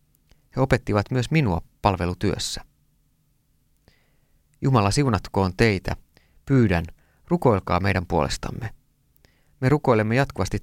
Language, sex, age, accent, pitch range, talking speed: Finnish, male, 30-49, native, 90-115 Hz, 85 wpm